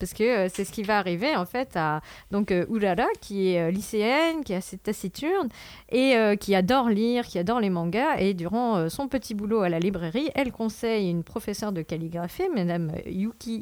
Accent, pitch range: French, 180-240 Hz